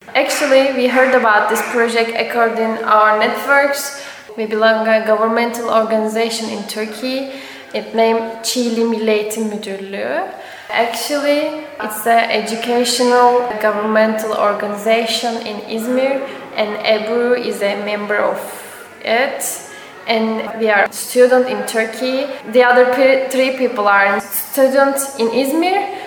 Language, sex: English, female